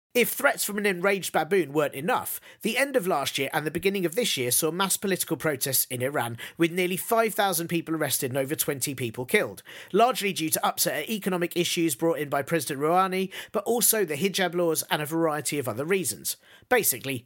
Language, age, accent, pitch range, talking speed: English, 40-59, British, 155-215 Hz, 205 wpm